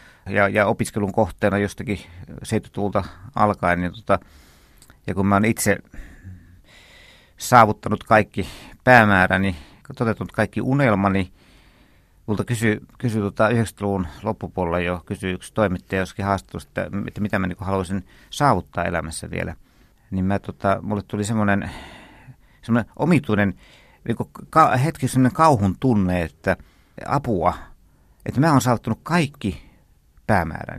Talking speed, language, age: 125 wpm, Finnish, 50-69